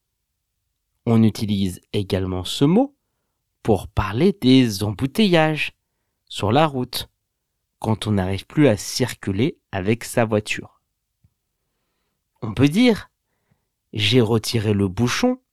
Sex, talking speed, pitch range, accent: male, 110 wpm, 100-155 Hz, French